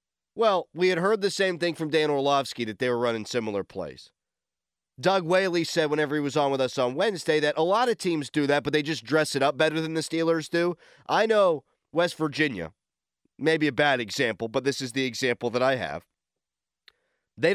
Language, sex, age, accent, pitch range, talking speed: English, male, 30-49, American, 135-175 Hz, 210 wpm